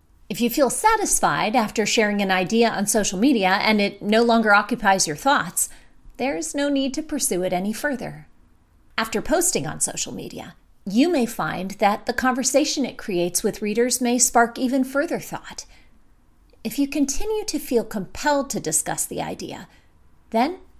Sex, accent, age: female, American, 30-49